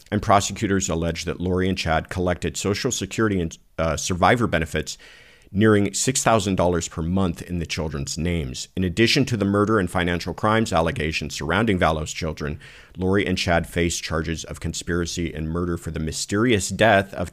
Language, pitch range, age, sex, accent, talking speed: English, 80-105 Hz, 50-69, male, American, 165 wpm